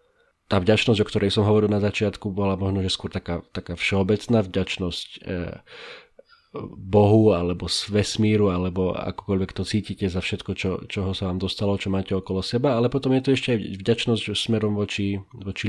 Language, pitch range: Slovak, 90-110 Hz